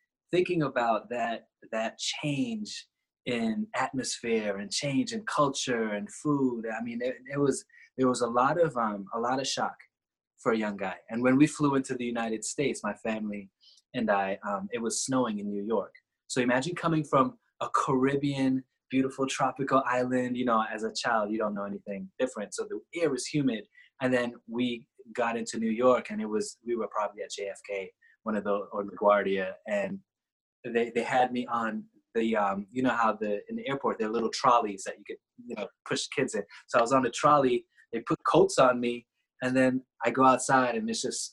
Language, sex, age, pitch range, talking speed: English, male, 20-39, 115-170 Hz, 205 wpm